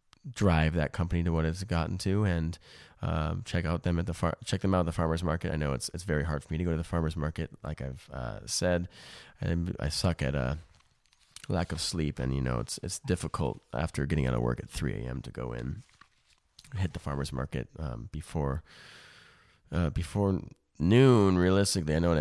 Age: 20-39